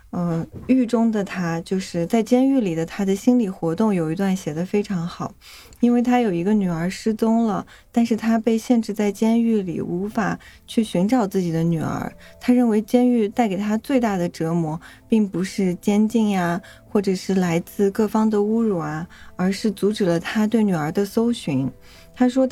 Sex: female